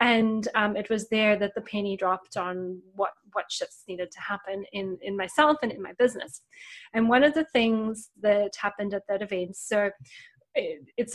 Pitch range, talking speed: 205-245 Hz, 195 wpm